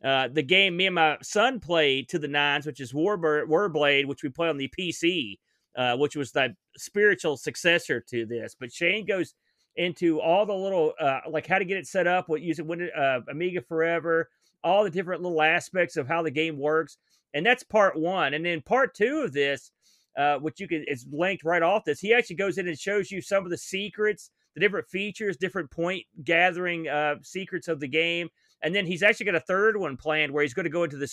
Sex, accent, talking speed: male, American, 225 wpm